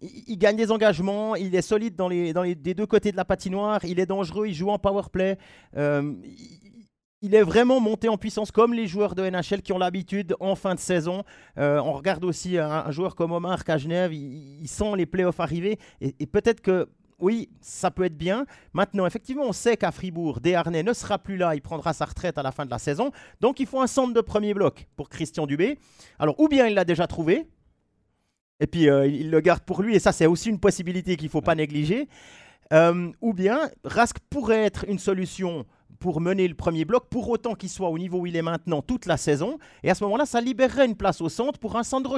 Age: 40-59